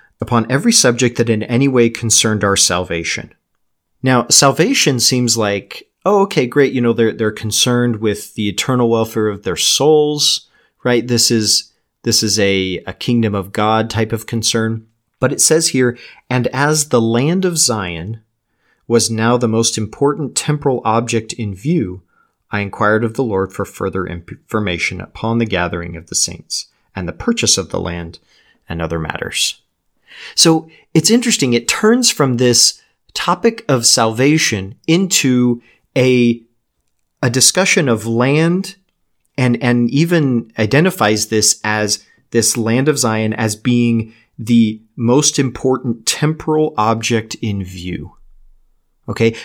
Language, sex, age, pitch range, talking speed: English, male, 40-59, 110-135 Hz, 145 wpm